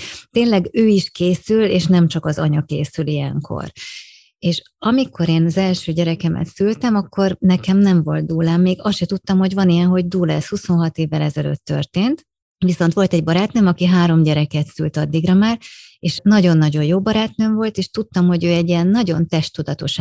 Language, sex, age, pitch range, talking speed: Hungarian, female, 30-49, 160-190 Hz, 185 wpm